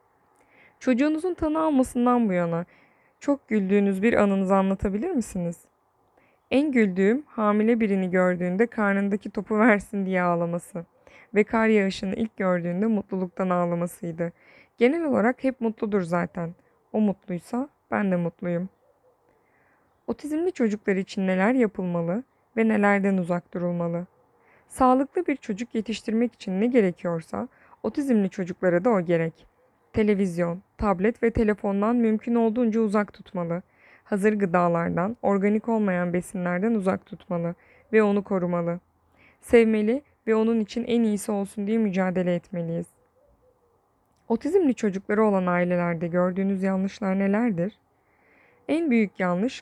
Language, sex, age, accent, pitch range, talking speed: Turkish, female, 20-39, native, 180-230 Hz, 115 wpm